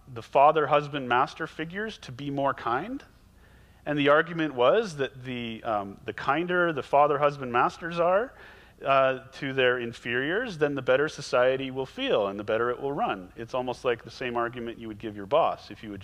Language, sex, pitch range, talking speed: English, male, 110-150 Hz, 185 wpm